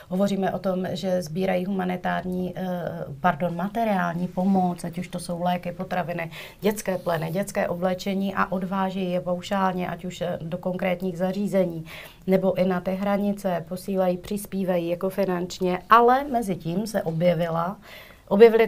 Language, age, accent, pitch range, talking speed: Czech, 40-59, native, 170-190 Hz, 140 wpm